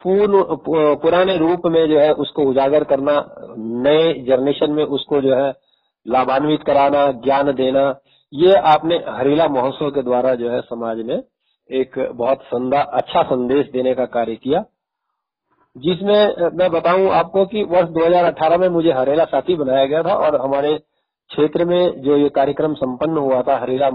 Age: 50-69